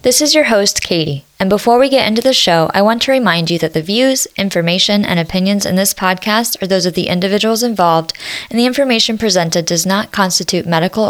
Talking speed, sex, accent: 215 wpm, female, American